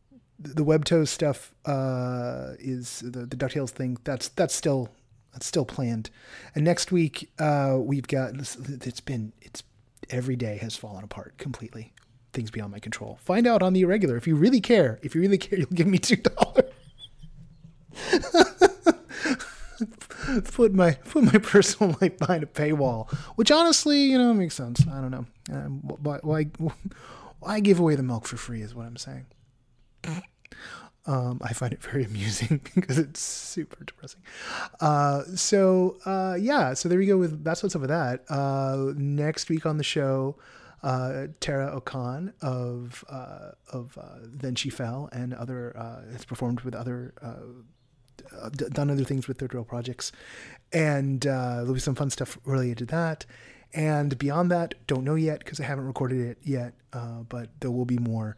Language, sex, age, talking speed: English, male, 30-49, 170 wpm